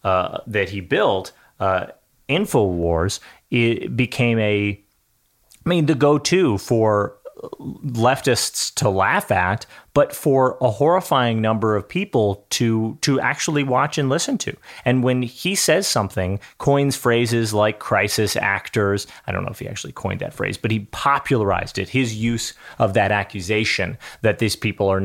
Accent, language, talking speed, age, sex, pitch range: American, English, 150 wpm, 30-49, male, 100-140 Hz